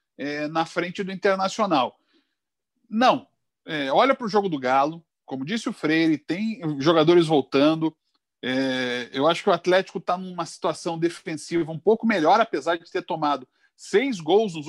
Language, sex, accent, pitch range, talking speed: Portuguese, male, Brazilian, 155-220 Hz, 165 wpm